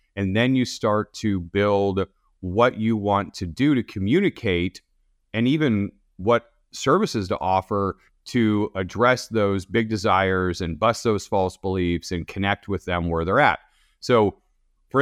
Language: English